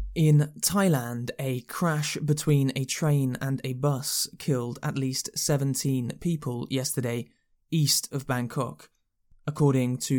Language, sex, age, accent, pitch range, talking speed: English, male, 20-39, British, 125-150 Hz, 125 wpm